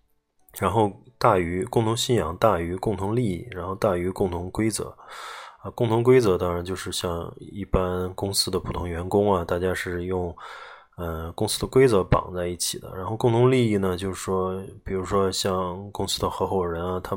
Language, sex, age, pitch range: Chinese, male, 20-39, 90-100 Hz